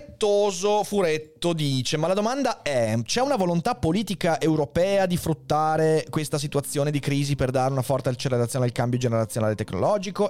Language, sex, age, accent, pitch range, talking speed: Italian, male, 30-49, native, 115-150 Hz, 150 wpm